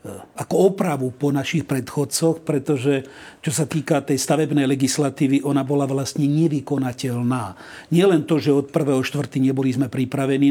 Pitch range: 130-150 Hz